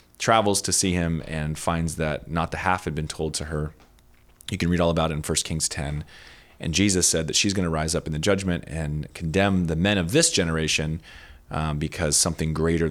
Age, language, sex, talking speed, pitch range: 20-39, English, male, 225 wpm, 75-90 Hz